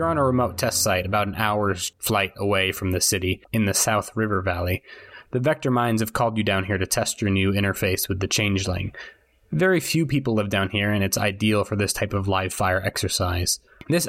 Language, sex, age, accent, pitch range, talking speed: English, male, 20-39, American, 95-115 Hz, 220 wpm